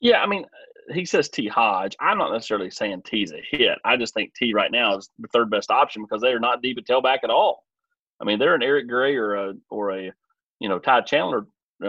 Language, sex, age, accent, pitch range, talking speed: English, male, 30-49, American, 105-145 Hz, 245 wpm